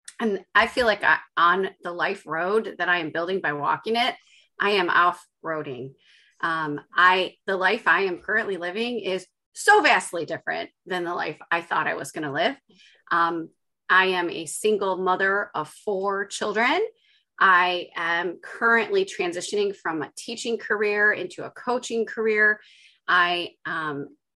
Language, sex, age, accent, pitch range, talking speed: English, female, 30-49, American, 175-260 Hz, 150 wpm